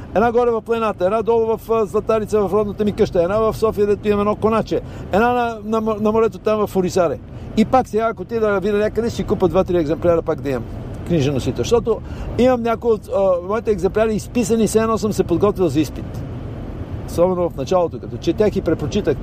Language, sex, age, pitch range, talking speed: Bulgarian, male, 60-79, 165-225 Hz, 205 wpm